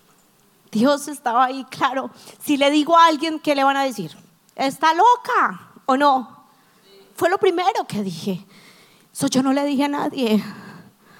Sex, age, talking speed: female, 30-49, 155 wpm